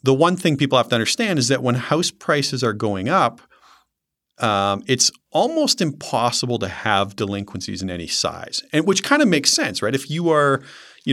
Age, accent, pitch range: 40-59, American, 105-135 Hz